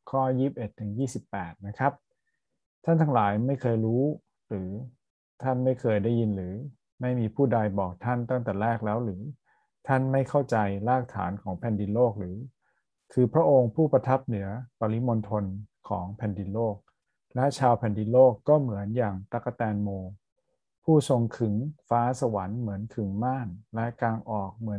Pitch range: 105-130 Hz